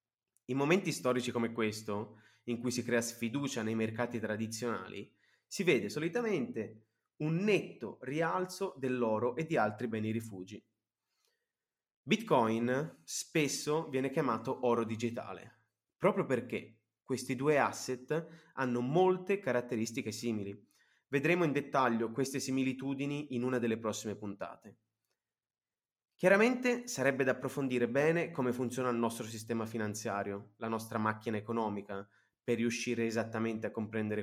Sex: male